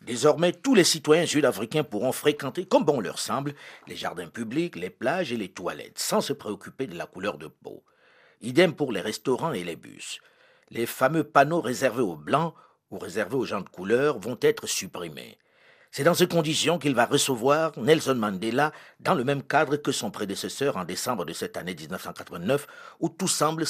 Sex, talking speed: male, 185 wpm